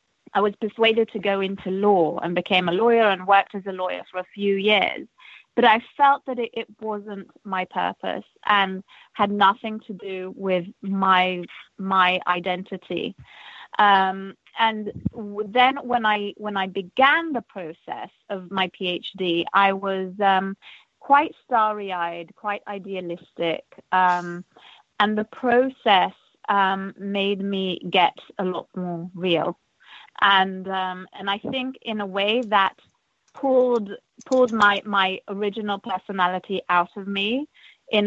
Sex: female